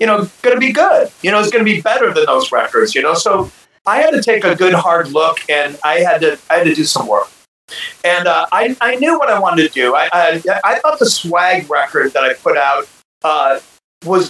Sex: male